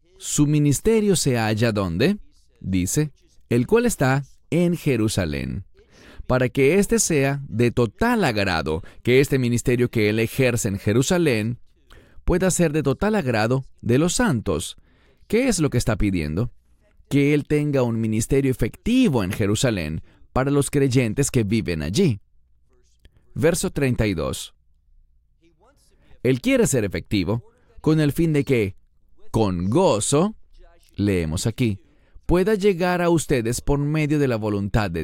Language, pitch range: English, 100-150 Hz